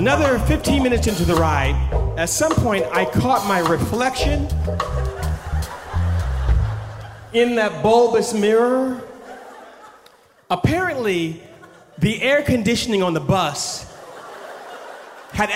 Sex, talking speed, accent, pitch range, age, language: male, 95 wpm, American, 130-215 Hz, 30-49, English